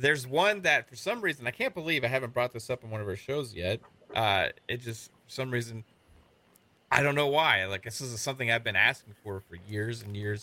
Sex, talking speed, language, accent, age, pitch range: male, 240 wpm, English, American, 30-49, 110-130 Hz